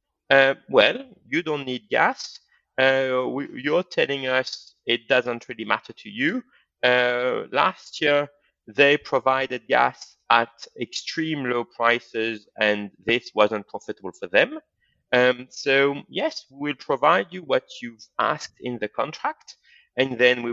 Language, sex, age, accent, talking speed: English, male, 30-49, French, 140 wpm